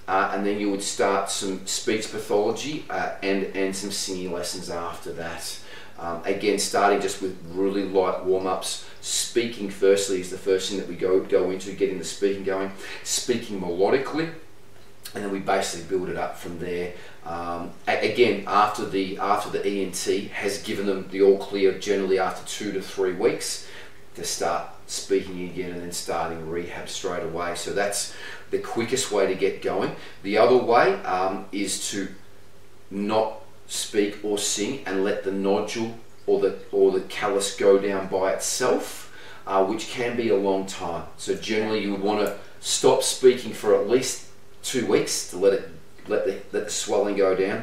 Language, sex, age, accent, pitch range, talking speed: English, male, 30-49, Australian, 95-105 Hz, 180 wpm